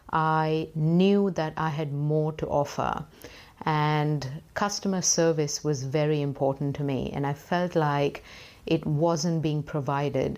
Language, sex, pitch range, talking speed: English, female, 145-160 Hz, 140 wpm